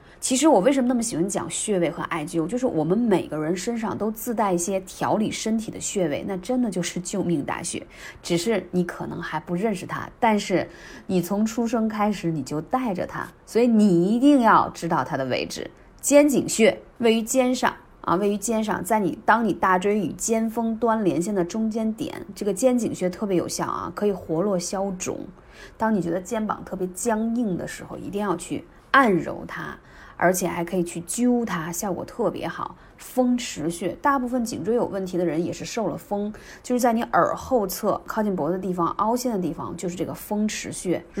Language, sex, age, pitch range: Chinese, female, 30-49, 175-230 Hz